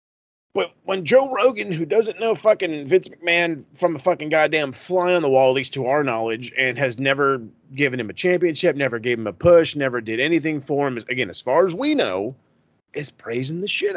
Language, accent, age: English, American, 30-49